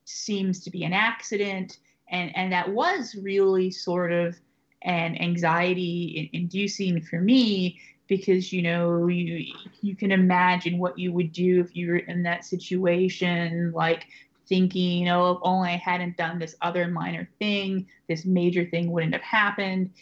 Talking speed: 155 wpm